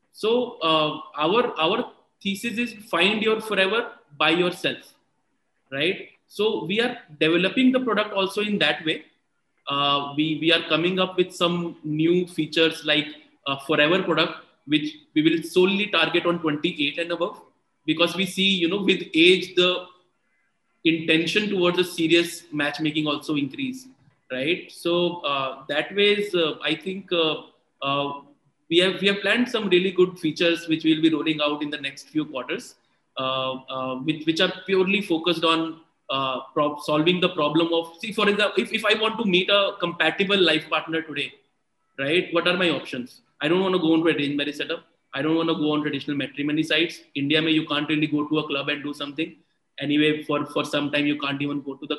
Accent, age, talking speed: Indian, 20-39, 190 wpm